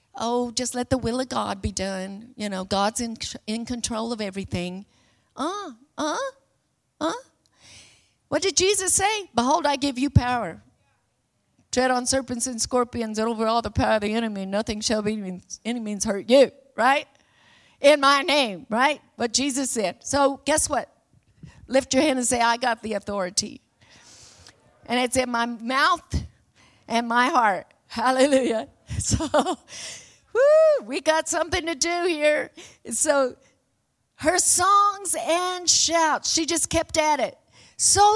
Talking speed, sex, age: 155 wpm, female, 50-69